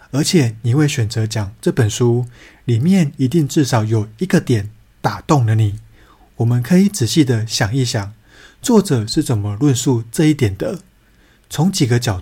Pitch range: 115-150 Hz